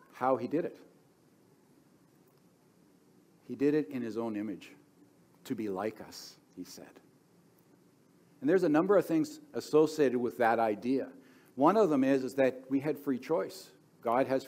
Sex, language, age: male, English, 60-79